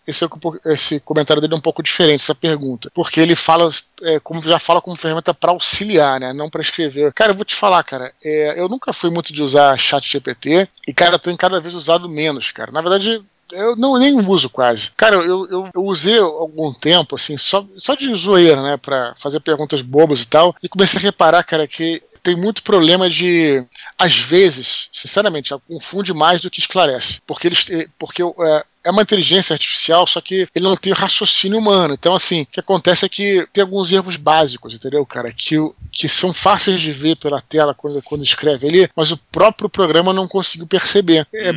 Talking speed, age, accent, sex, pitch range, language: 200 wpm, 20-39, Brazilian, male, 150-185 Hz, Portuguese